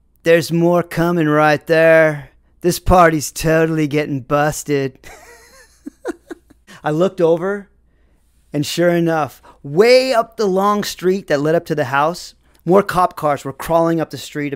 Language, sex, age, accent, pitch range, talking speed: English, male, 40-59, American, 150-195 Hz, 145 wpm